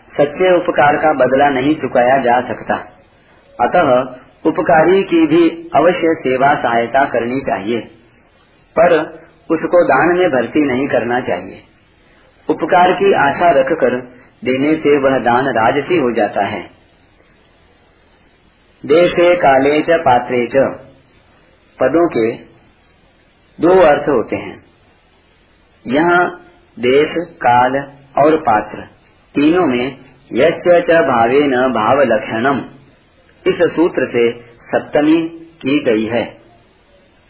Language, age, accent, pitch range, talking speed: Hindi, 40-59, native, 125-175 Hz, 110 wpm